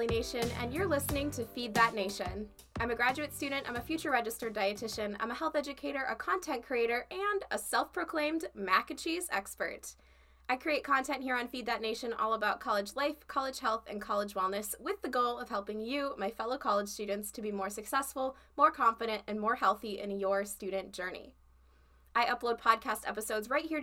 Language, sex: English, female